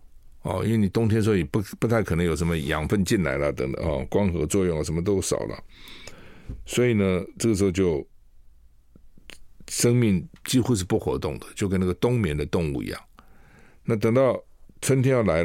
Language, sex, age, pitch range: Chinese, male, 60-79, 80-110 Hz